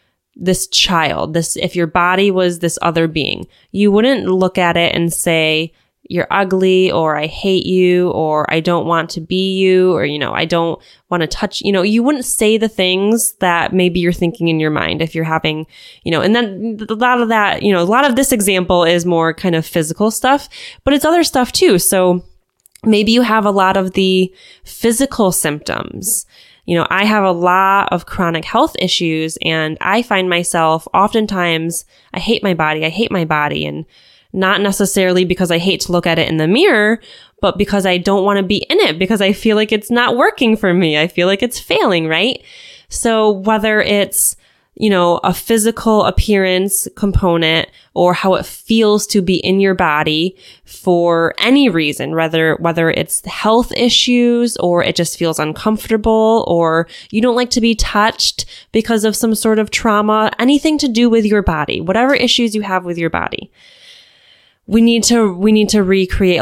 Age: 20-39